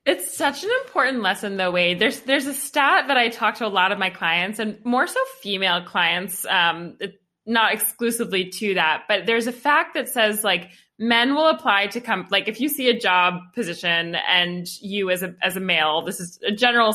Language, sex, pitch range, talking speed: English, female, 185-240 Hz, 215 wpm